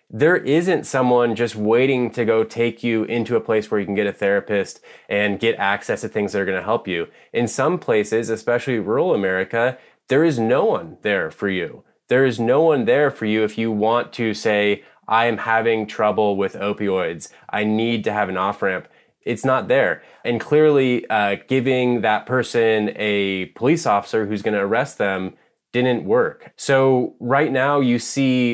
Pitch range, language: 105-135 Hz, English